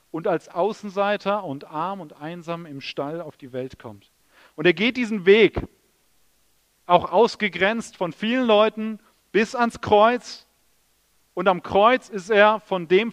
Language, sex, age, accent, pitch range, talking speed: German, male, 40-59, German, 165-220 Hz, 150 wpm